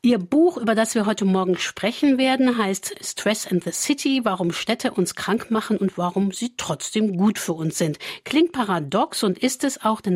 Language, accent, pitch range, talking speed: German, German, 170-230 Hz, 200 wpm